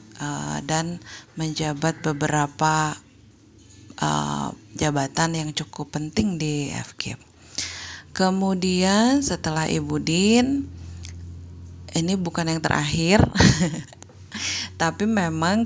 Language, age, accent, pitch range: Indonesian, 30-49, native, 135-175 Hz